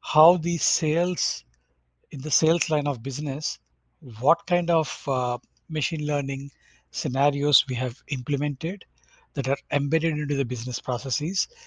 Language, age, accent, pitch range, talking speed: English, 60-79, Indian, 125-160 Hz, 135 wpm